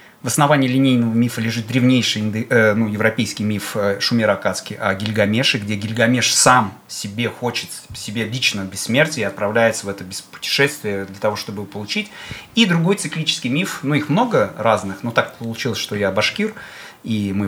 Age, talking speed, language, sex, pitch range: 30-49, 165 wpm, Russian, male, 105-145 Hz